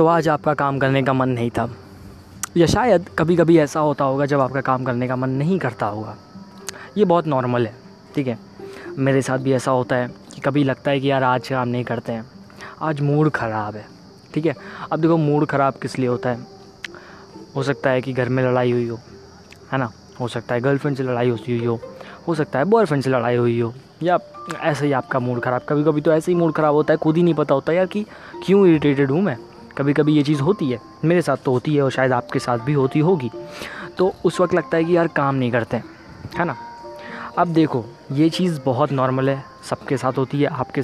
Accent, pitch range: native, 125-160 Hz